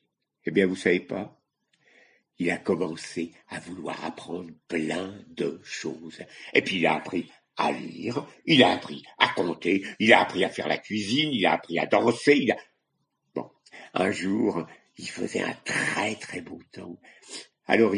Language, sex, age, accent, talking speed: French, male, 60-79, French, 170 wpm